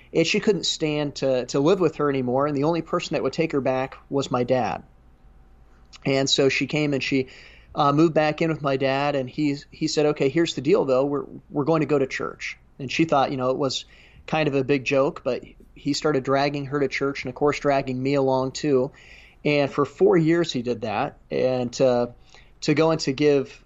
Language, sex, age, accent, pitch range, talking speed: English, male, 30-49, American, 130-150 Hz, 230 wpm